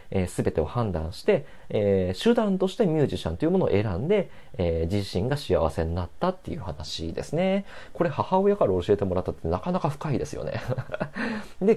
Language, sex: Japanese, male